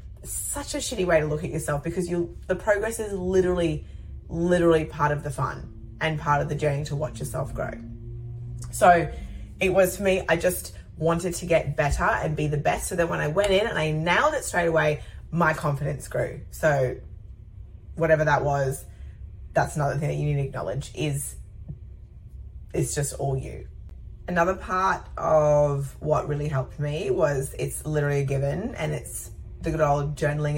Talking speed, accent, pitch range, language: 185 wpm, Australian, 140-175 Hz, English